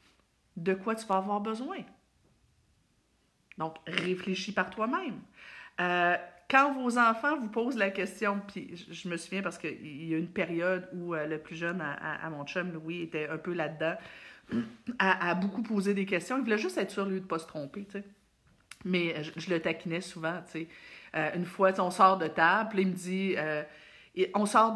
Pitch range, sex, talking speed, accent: 170-225 Hz, female, 195 wpm, Canadian